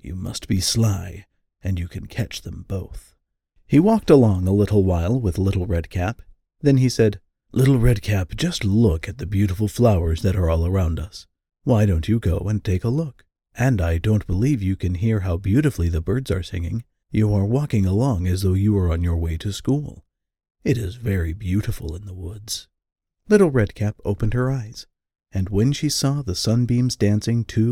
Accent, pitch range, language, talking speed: American, 90-120 Hz, English, 200 wpm